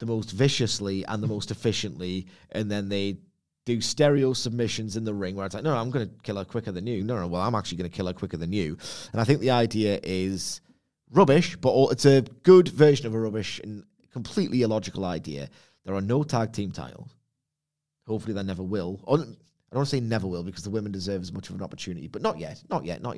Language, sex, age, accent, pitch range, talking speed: English, male, 30-49, British, 95-130 Hz, 240 wpm